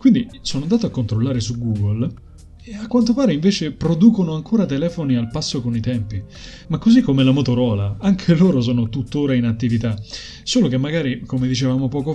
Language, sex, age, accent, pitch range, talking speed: Italian, male, 20-39, native, 110-135 Hz, 185 wpm